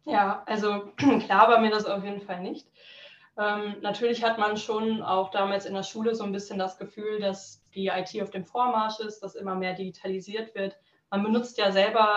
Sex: female